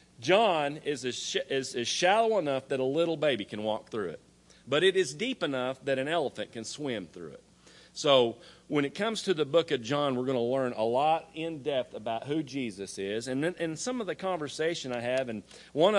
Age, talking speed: 40-59, 215 wpm